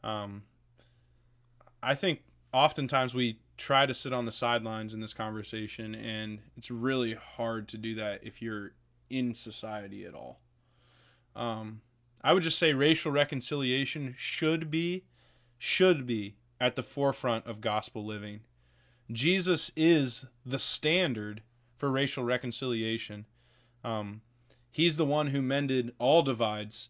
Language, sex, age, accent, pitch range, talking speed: English, male, 20-39, American, 115-145 Hz, 130 wpm